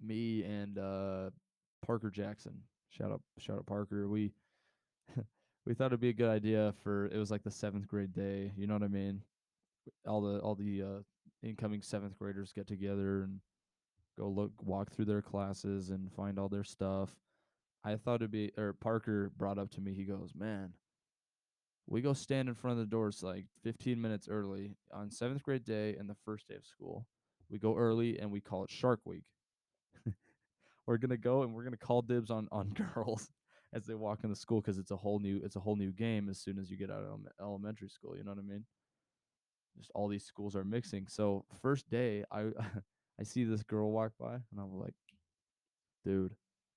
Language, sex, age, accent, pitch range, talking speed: English, male, 20-39, American, 100-110 Hz, 205 wpm